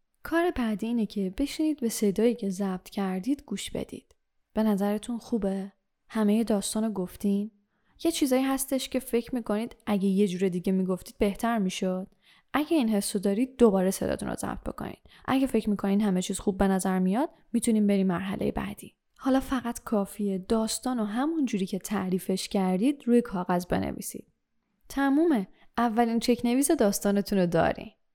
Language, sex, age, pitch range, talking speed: Persian, female, 10-29, 195-245 Hz, 140 wpm